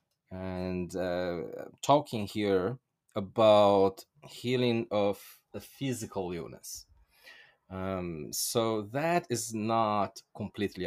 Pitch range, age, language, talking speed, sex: 90-115 Hz, 30-49, English, 90 wpm, male